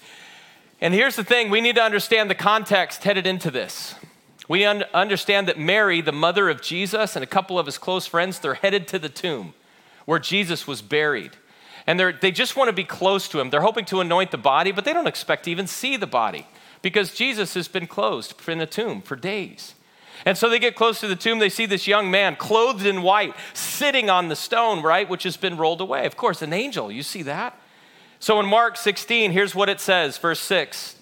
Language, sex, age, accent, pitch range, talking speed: English, male, 40-59, American, 185-235 Hz, 220 wpm